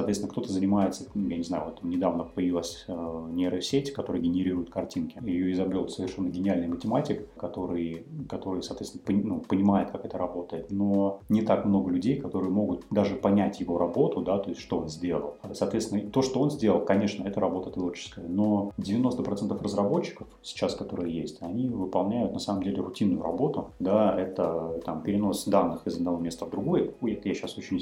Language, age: Russian, 30-49